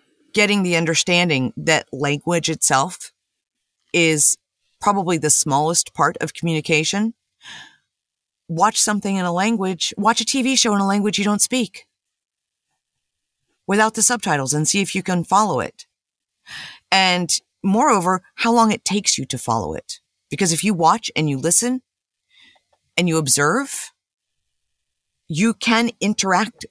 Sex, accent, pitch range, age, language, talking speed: female, American, 160-215 Hz, 50-69, English, 135 wpm